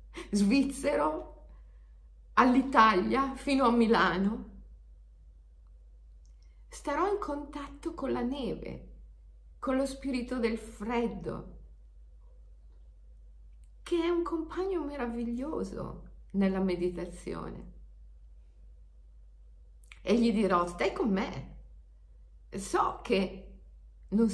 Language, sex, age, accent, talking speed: Italian, female, 50-69, native, 80 wpm